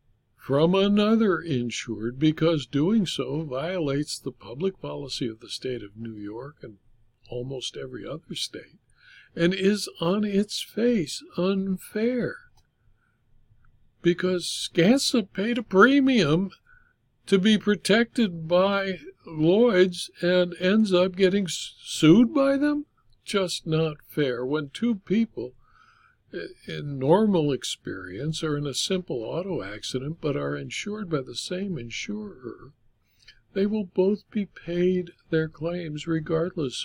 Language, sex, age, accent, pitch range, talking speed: English, male, 60-79, American, 130-195 Hz, 120 wpm